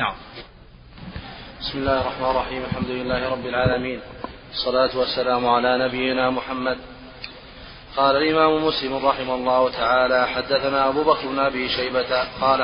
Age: 30-49